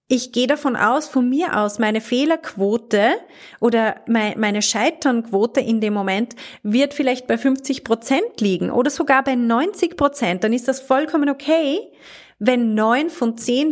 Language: German